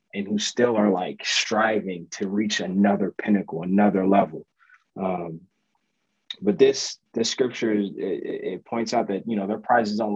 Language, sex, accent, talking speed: English, male, American, 160 wpm